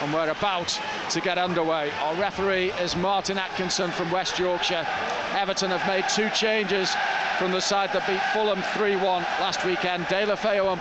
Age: 50-69